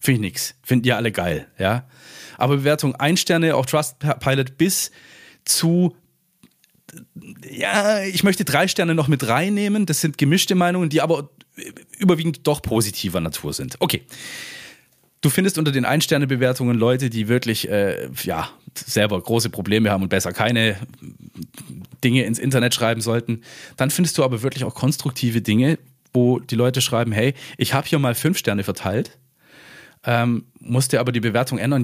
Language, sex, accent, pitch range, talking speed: German, male, German, 115-150 Hz, 160 wpm